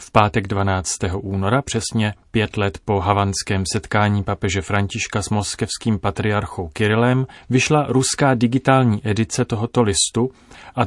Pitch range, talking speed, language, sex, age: 105-125 Hz, 125 wpm, Czech, male, 30-49